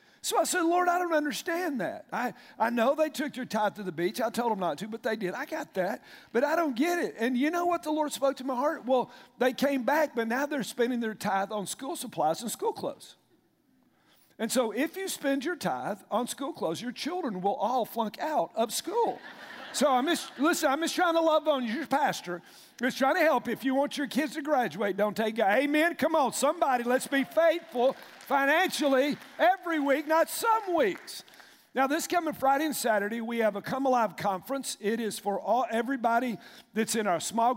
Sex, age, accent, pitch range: male, 50-69, American, 205-300 Hz